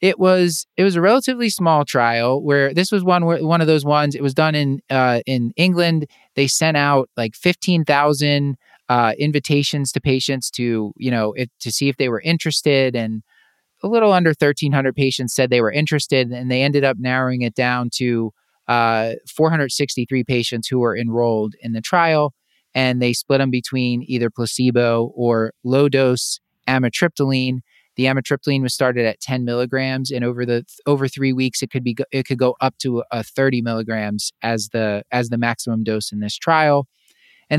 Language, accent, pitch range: English, American, 120-150 Hz